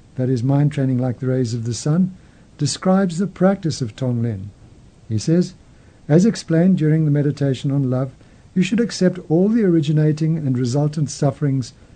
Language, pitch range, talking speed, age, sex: English, 130-165 Hz, 165 wpm, 60-79, male